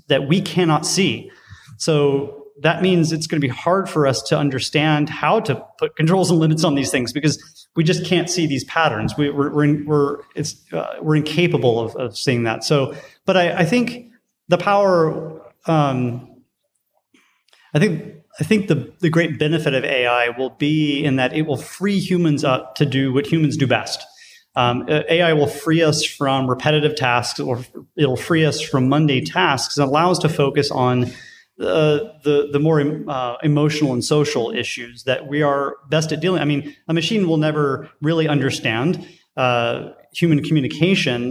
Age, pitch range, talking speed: 30-49, 135-160 Hz, 185 wpm